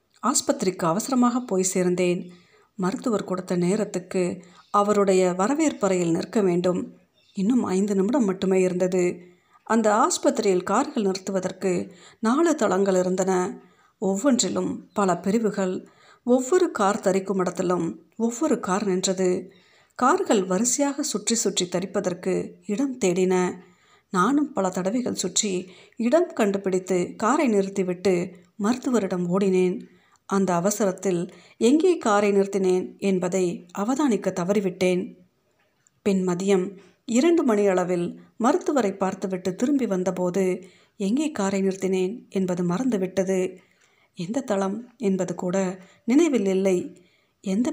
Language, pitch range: Tamil, 185-225 Hz